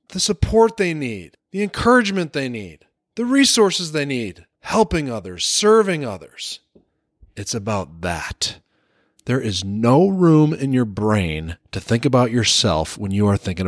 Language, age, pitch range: English, 30-49, 105-165 Hz